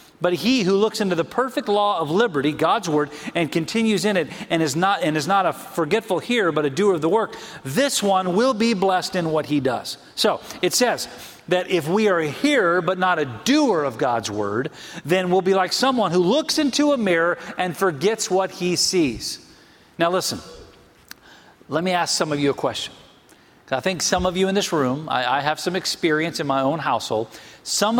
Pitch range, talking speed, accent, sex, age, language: 150-195 Hz, 210 wpm, American, male, 40-59, English